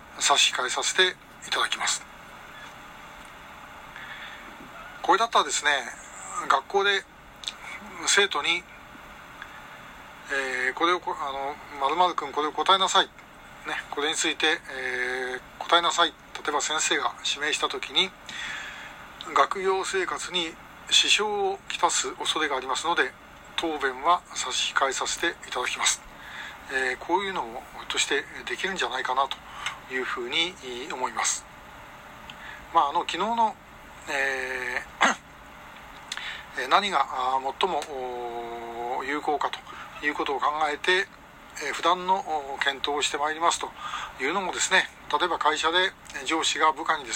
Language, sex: Japanese, male